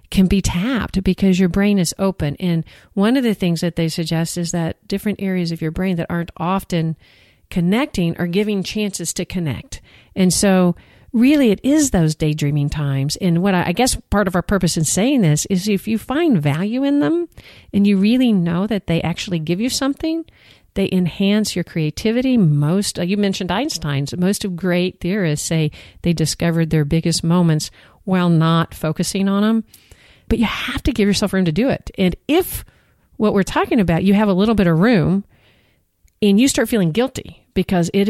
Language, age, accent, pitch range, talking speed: English, 50-69, American, 165-210 Hz, 190 wpm